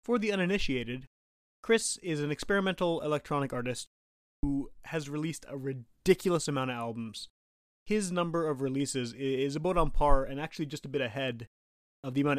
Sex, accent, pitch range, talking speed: male, American, 125-155 Hz, 165 wpm